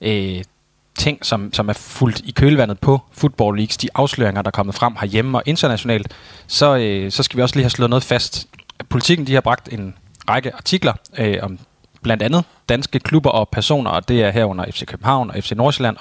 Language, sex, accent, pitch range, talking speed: Danish, male, native, 105-135 Hz, 195 wpm